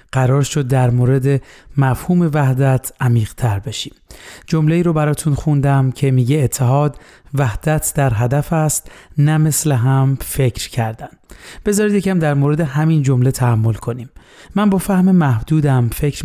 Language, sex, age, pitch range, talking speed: Persian, male, 30-49, 130-155 Hz, 135 wpm